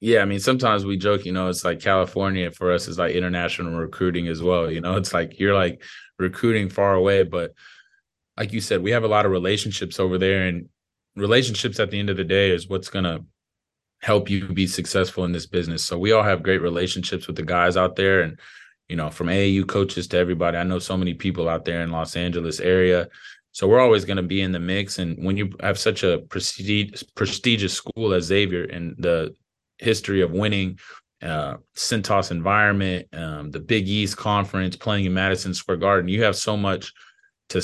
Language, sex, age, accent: English, male, 20-39, American